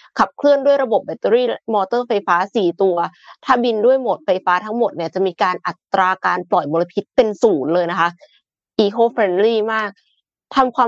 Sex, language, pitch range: female, Thai, 185-245 Hz